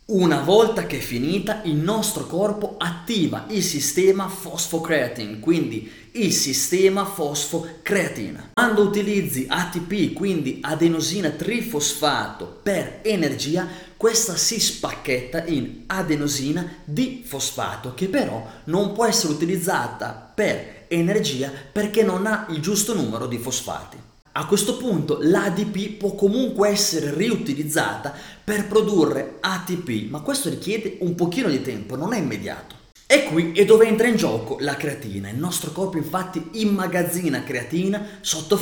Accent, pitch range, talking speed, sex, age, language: native, 150-205 Hz, 130 wpm, male, 20-39, Italian